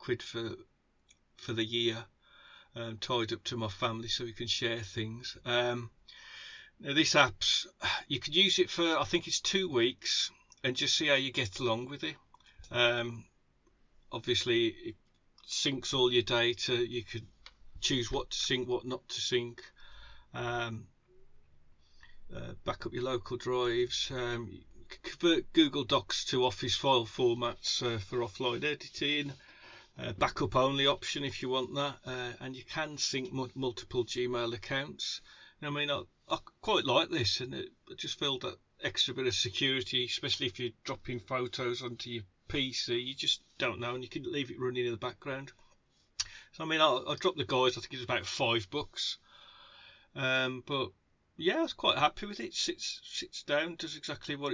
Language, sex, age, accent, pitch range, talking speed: English, male, 40-59, British, 120-145 Hz, 175 wpm